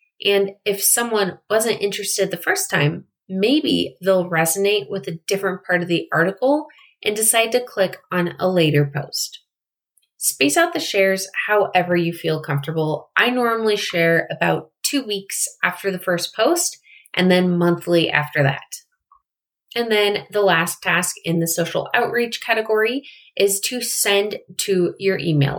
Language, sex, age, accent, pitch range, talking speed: English, female, 20-39, American, 180-225 Hz, 150 wpm